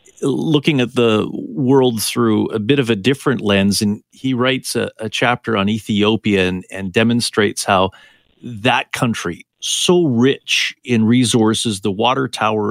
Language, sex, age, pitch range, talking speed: English, male, 40-59, 110-130 Hz, 150 wpm